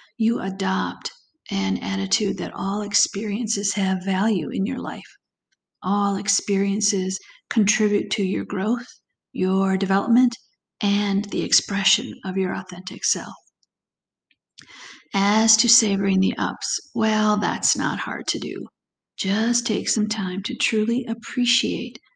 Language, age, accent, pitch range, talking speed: English, 50-69, American, 195-225 Hz, 120 wpm